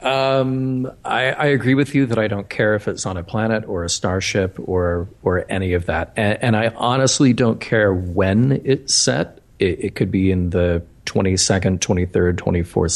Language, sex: English, male